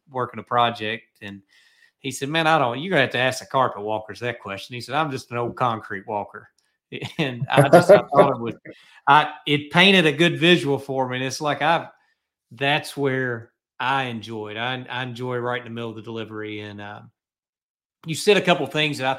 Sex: male